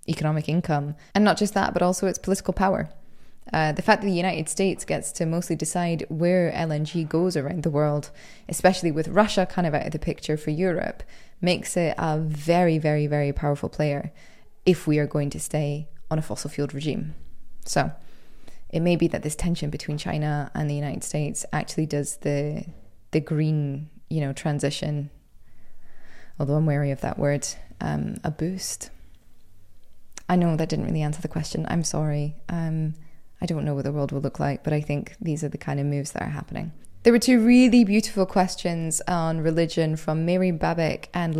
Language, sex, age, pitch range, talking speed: English, female, 20-39, 150-175 Hz, 190 wpm